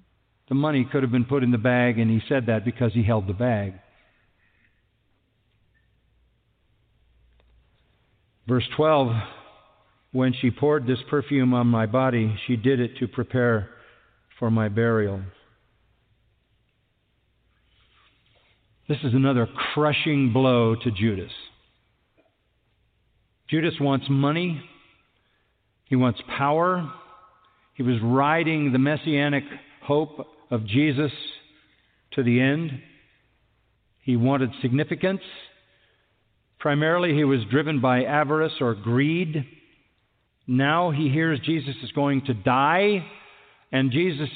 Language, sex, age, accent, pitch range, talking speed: English, male, 50-69, American, 115-155 Hz, 110 wpm